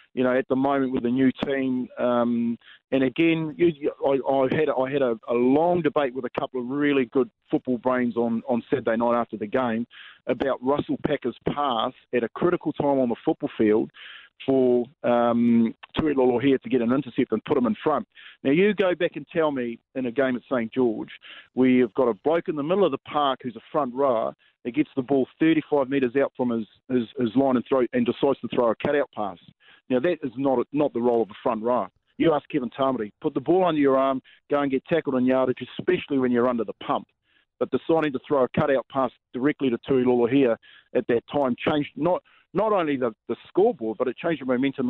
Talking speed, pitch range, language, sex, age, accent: 225 wpm, 120-140 Hz, English, male, 40-59, Australian